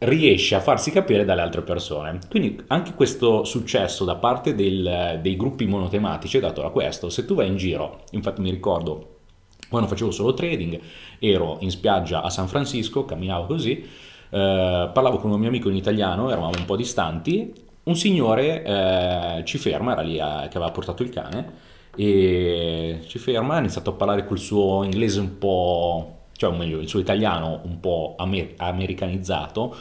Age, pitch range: 30-49, 90-135 Hz